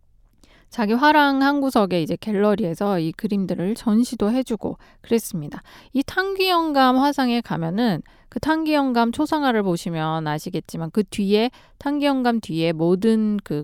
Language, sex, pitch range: Korean, female, 165-250 Hz